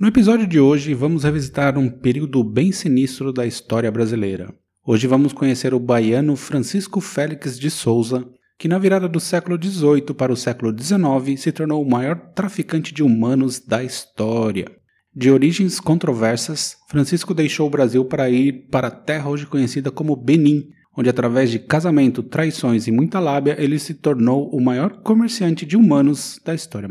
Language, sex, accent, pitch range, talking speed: Portuguese, male, Brazilian, 120-170 Hz, 165 wpm